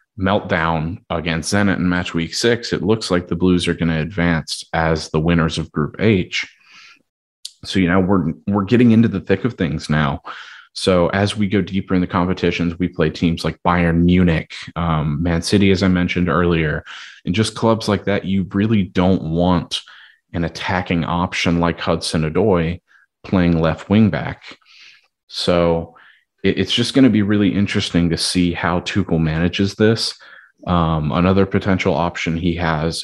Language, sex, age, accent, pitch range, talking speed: English, male, 30-49, American, 85-100 Hz, 170 wpm